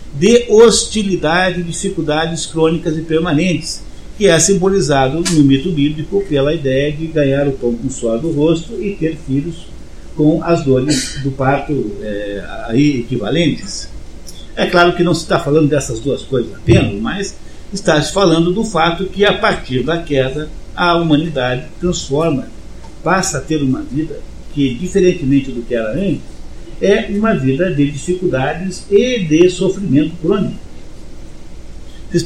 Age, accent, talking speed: 50-69, Brazilian, 150 wpm